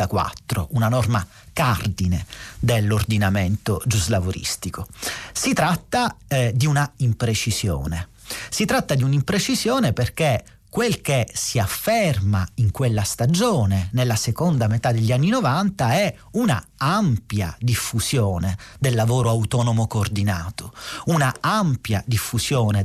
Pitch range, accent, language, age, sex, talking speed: 110-150 Hz, native, Italian, 40-59, male, 105 wpm